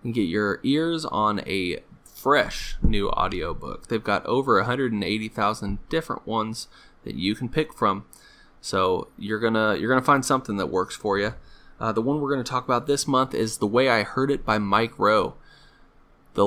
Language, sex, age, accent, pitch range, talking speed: English, male, 20-39, American, 105-130 Hz, 190 wpm